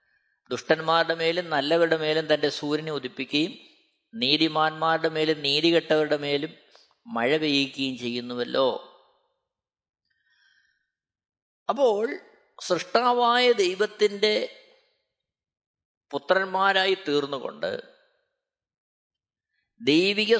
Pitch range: 160-245 Hz